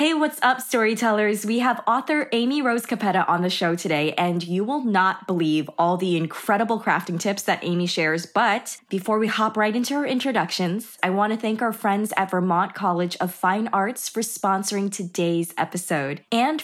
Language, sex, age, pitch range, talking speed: English, female, 20-39, 180-230 Hz, 190 wpm